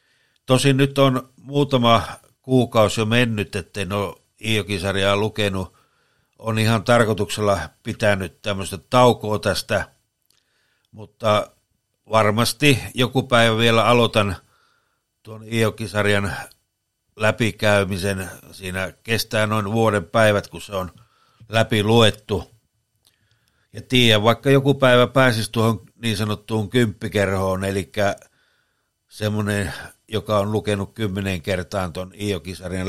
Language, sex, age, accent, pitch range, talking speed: Finnish, male, 60-79, native, 100-120 Hz, 100 wpm